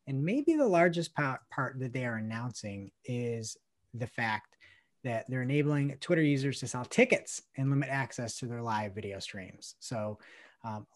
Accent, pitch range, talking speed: American, 115-155 Hz, 165 wpm